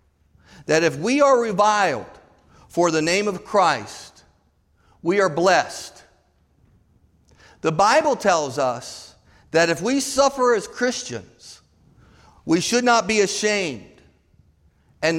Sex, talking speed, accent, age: male, 115 wpm, American, 50-69